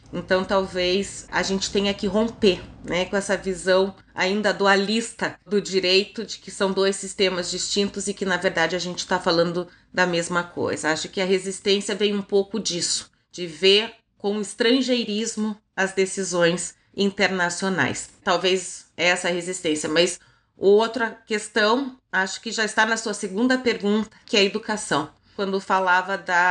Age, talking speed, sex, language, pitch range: 30-49, 155 wpm, female, Portuguese, 185-215 Hz